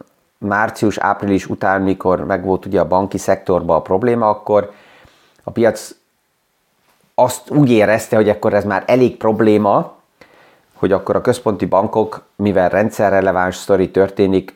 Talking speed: 135 wpm